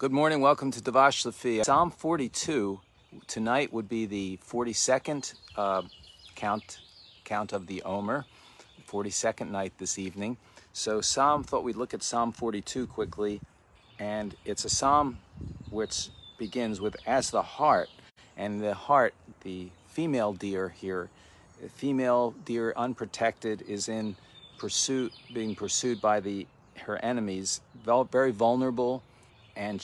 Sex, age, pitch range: male, 50-69, 100-120 Hz